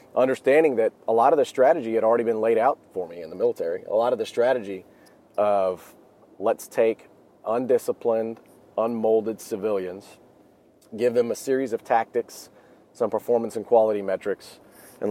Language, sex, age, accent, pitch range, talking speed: English, male, 40-59, American, 110-145 Hz, 160 wpm